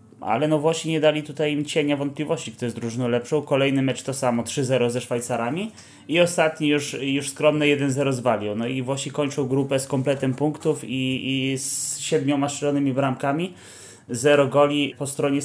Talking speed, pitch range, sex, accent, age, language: 175 wpm, 125-145 Hz, male, native, 20-39, Polish